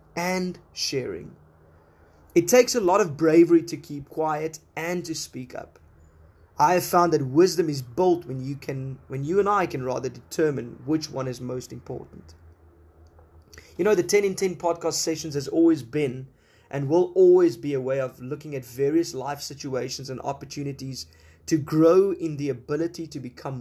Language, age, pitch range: English, 20-39, 130-170 Hz